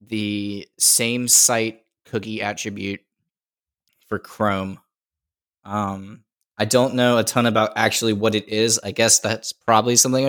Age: 10-29